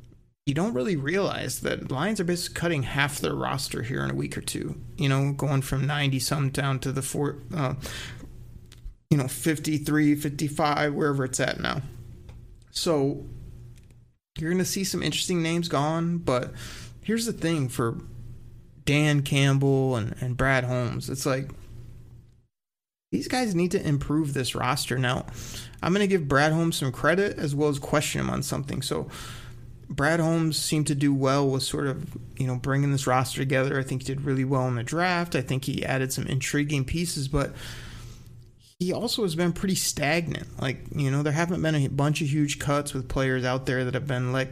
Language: English